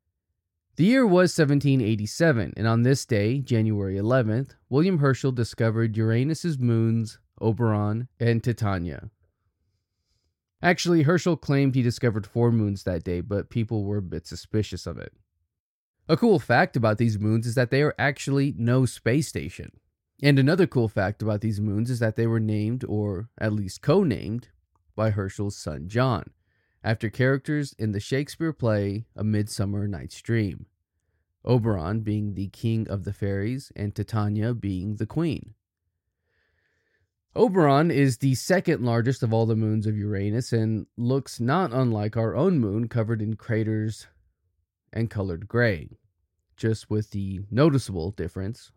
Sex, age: male, 20-39